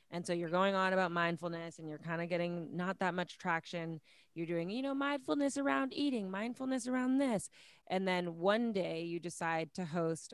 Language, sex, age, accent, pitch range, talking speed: English, female, 20-39, American, 165-220 Hz, 195 wpm